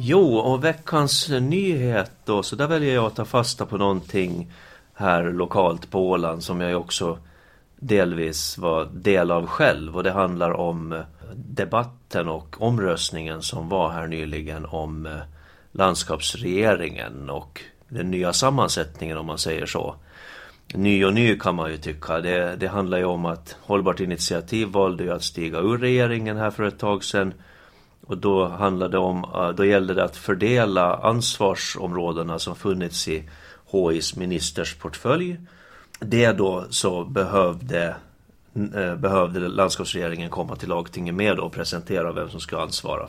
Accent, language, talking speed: native, Swedish, 150 wpm